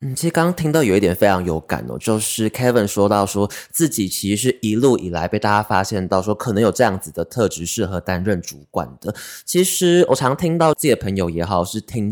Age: 20-39